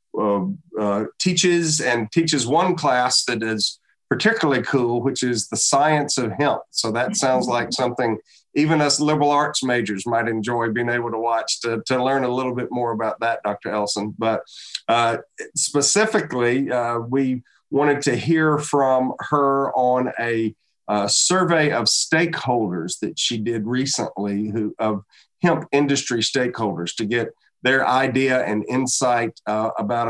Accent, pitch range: American, 115-145 Hz